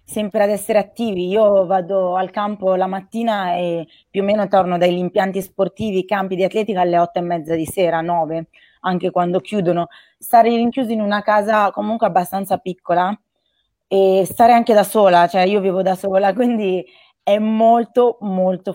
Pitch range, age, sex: 185-225 Hz, 20-39, female